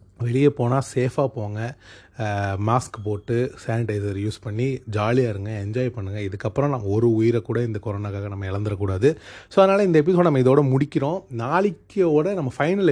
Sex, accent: male, native